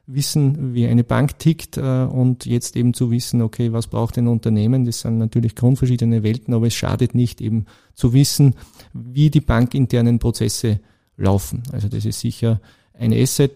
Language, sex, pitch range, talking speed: German, male, 115-135 Hz, 175 wpm